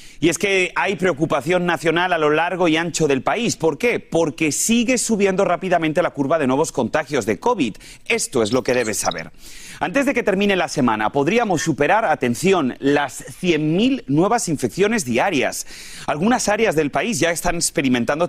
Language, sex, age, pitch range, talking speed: Spanish, male, 30-49, 140-200 Hz, 175 wpm